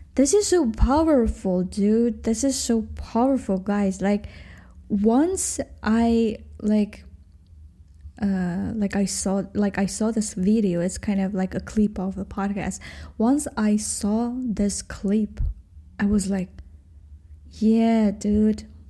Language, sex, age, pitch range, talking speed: English, female, 10-29, 185-220 Hz, 135 wpm